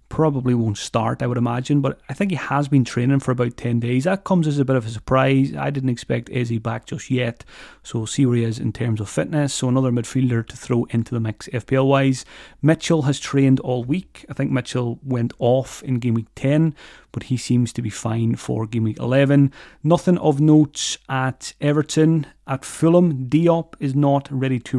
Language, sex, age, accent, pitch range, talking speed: English, male, 30-49, British, 120-145 Hz, 210 wpm